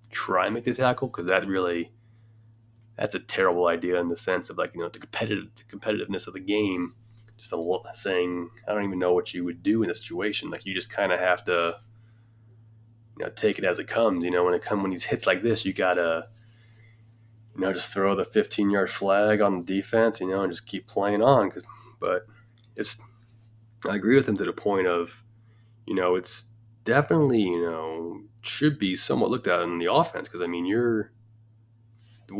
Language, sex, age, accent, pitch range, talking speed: English, male, 20-39, American, 90-110 Hz, 205 wpm